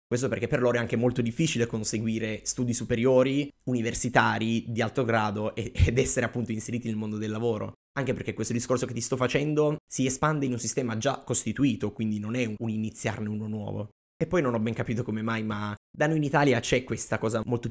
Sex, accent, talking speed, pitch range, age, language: male, native, 210 wpm, 110-130 Hz, 20-39, Italian